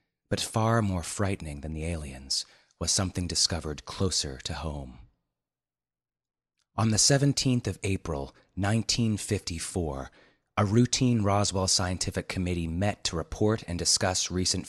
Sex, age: male, 30-49